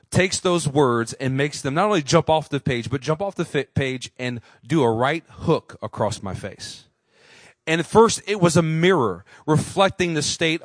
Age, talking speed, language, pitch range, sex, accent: 40-59, 205 wpm, English, 120-170 Hz, male, American